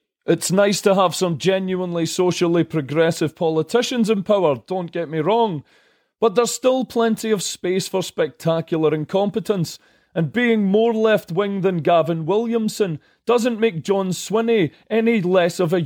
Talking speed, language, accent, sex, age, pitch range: 150 wpm, English, British, male, 30-49, 165-210 Hz